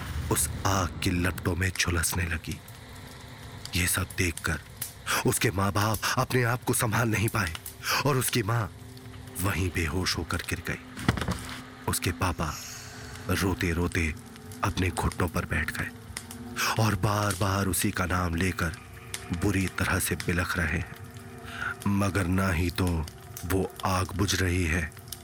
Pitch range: 90-115 Hz